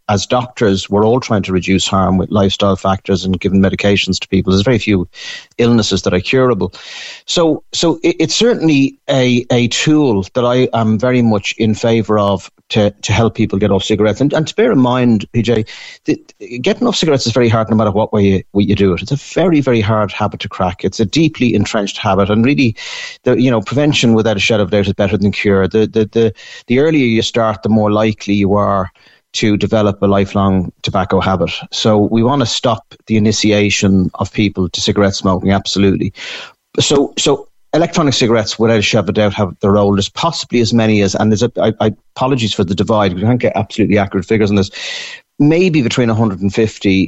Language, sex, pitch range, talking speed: English, male, 100-120 Hz, 215 wpm